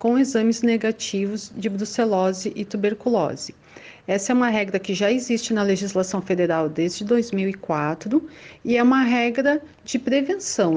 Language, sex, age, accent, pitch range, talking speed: Portuguese, female, 40-59, Brazilian, 190-235 Hz, 140 wpm